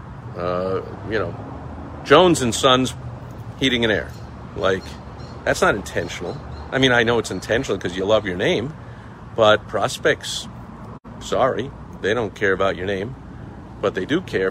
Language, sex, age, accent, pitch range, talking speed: English, male, 50-69, American, 100-125 Hz, 155 wpm